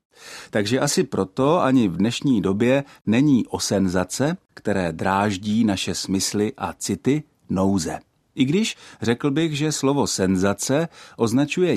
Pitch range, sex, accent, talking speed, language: 100-135 Hz, male, native, 125 wpm, Czech